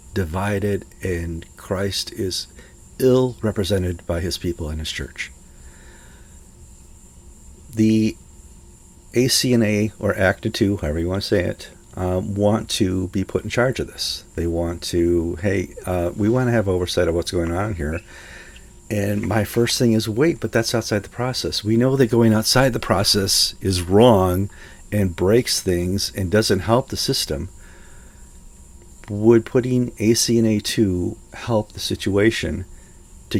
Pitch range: 85-110 Hz